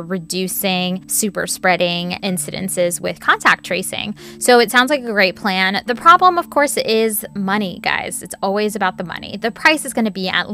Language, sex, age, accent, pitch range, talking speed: English, female, 20-39, American, 190-225 Hz, 190 wpm